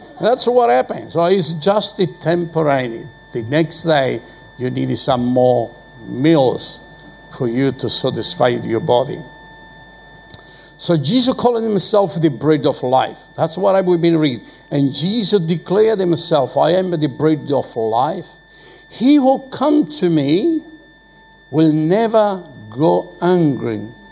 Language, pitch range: English, 140-170 Hz